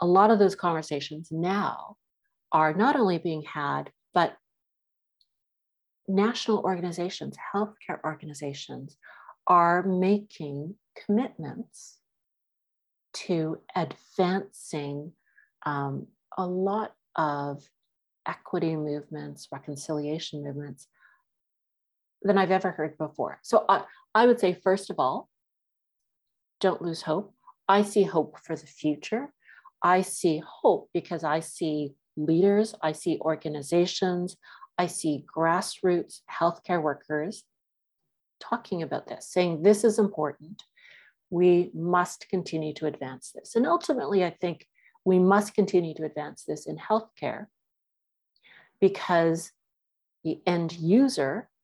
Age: 50-69